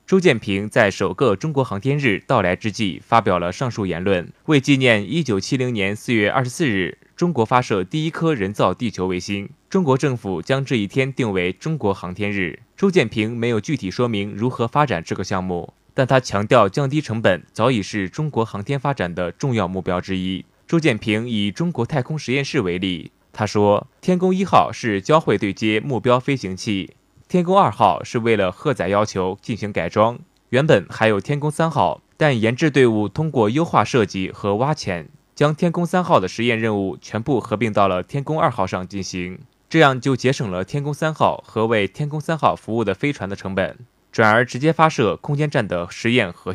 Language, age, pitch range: Chinese, 20-39, 100-145 Hz